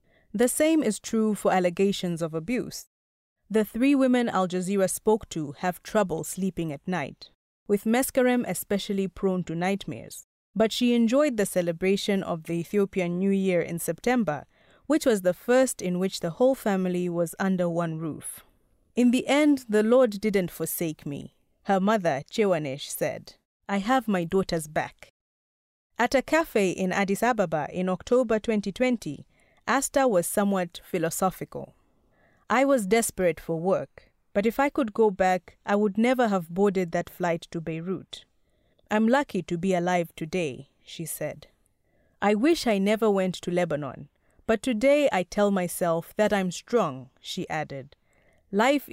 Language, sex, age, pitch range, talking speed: English, female, 30-49, 175-230 Hz, 155 wpm